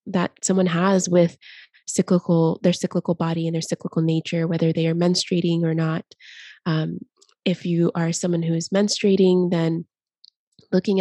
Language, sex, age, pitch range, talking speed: English, female, 20-39, 165-180 Hz, 155 wpm